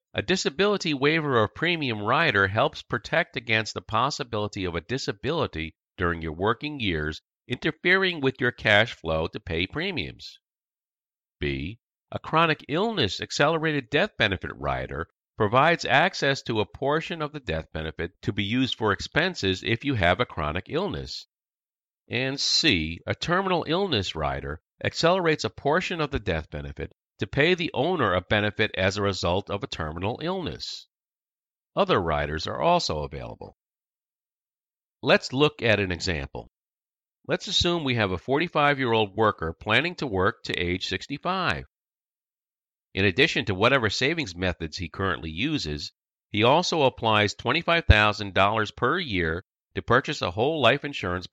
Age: 50-69